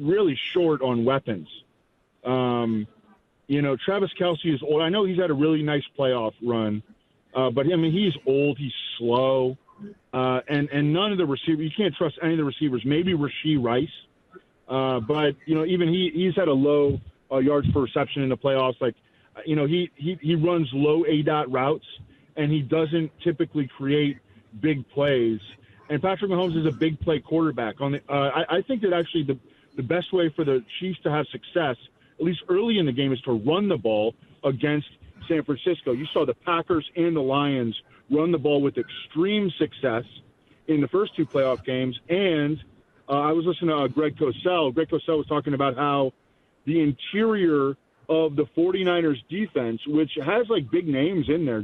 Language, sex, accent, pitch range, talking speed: English, male, American, 130-165 Hz, 195 wpm